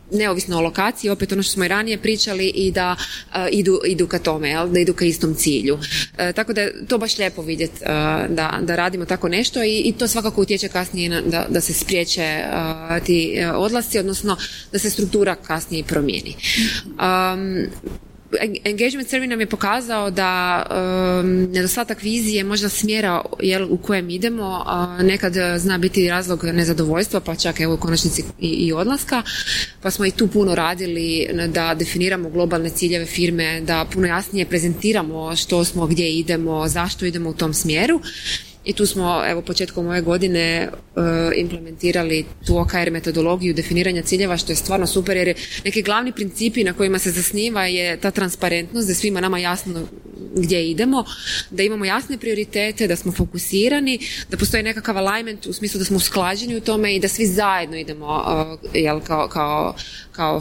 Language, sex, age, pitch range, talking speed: Croatian, female, 20-39, 170-200 Hz, 165 wpm